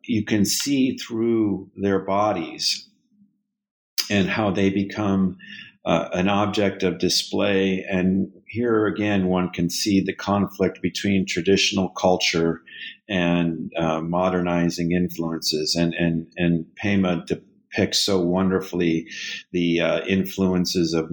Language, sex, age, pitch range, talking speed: English, male, 50-69, 85-100 Hz, 115 wpm